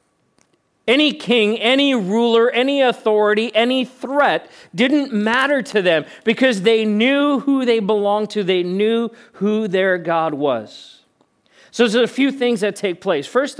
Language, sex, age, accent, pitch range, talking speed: English, male, 40-59, American, 175-235 Hz, 150 wpm